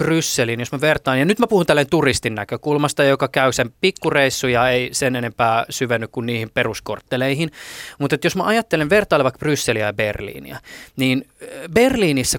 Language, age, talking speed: Finnish, 20-39, 160 wpm